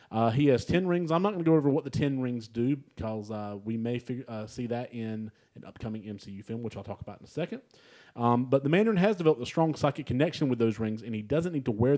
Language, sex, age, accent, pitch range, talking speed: English, male, 30-49, American, 115-155 Hz, 270 wpm